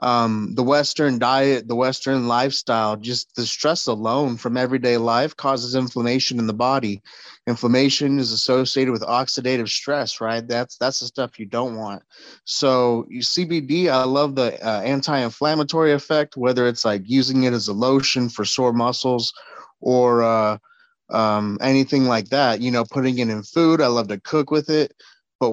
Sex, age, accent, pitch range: male, 30-49, American, 120-145 Hz